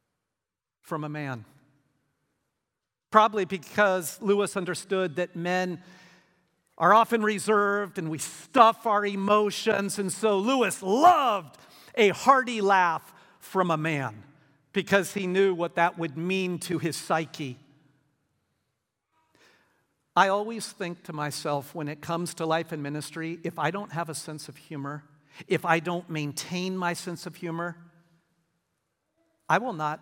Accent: American